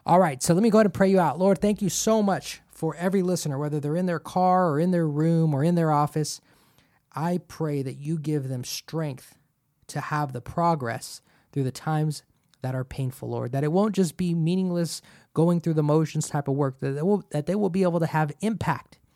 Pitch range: 145-175 Hz